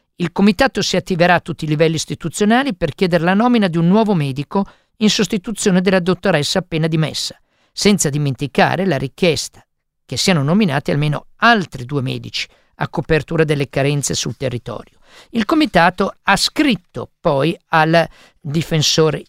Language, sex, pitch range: Italian, male, 160-220 Hz